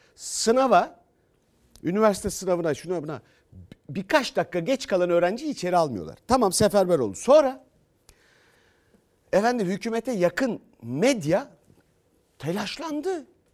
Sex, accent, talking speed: male, native, 95 wpm